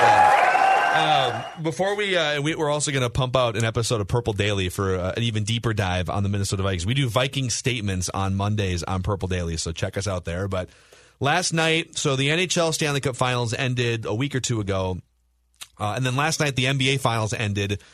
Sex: male